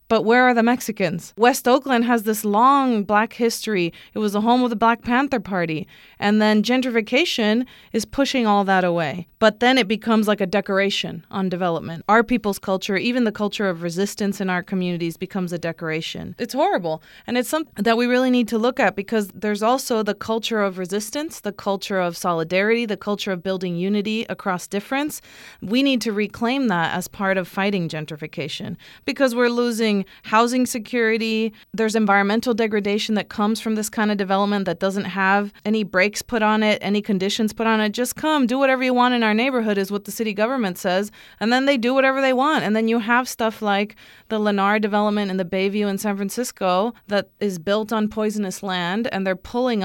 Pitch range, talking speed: 195-240 Hz, 200 wpm